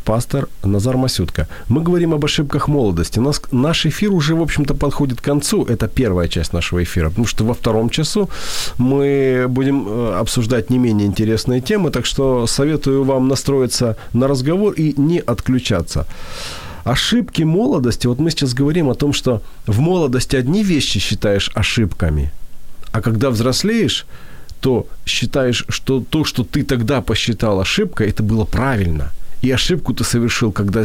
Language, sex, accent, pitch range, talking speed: Ukrainian, male, native, 105-140 Hz, 150 wpm